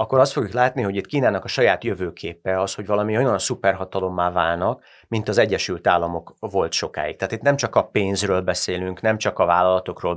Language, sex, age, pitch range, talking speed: Hungarian, male, 30-49, 90-110 Hz, 195 wpm